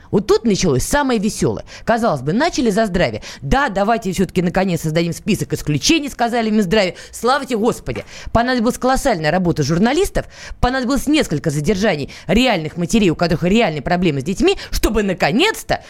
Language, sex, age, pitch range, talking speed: Russian, female, 20-39, 190-270 Hz, 150 wpm